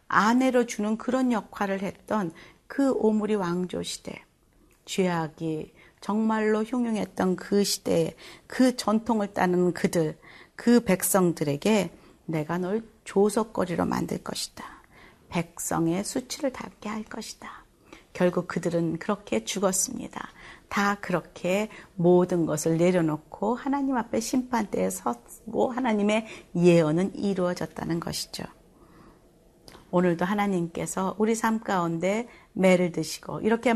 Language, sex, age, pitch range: Korean, female, 40-59, 175-230 Hz